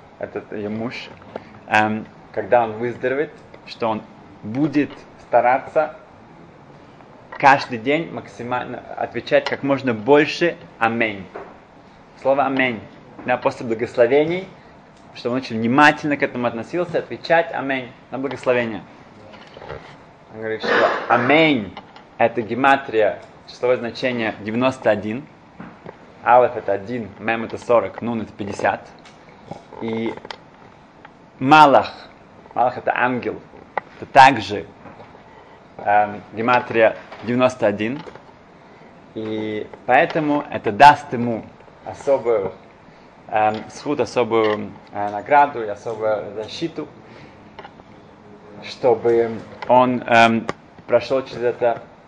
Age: 20-39